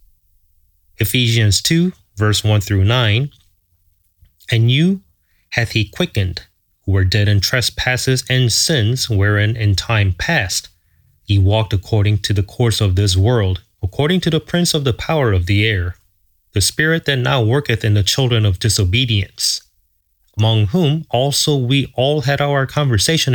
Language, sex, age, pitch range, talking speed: English, male, 30-49, 95-130 Hz, 150 wpm